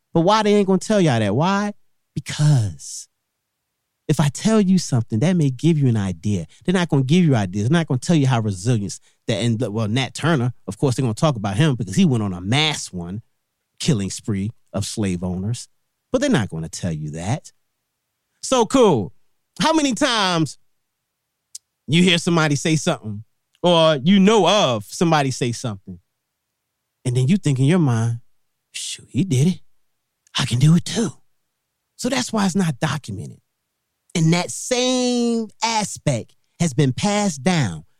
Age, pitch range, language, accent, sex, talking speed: 30-49, 120-200 Hz, English, American, male, 185 wpm